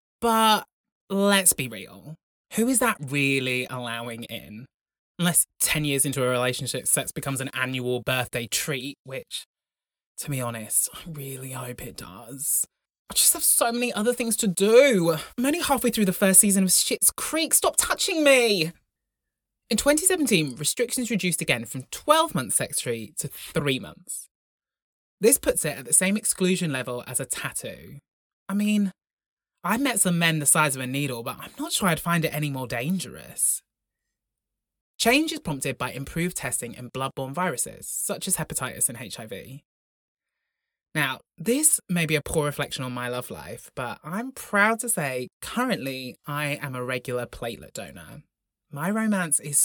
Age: 20-39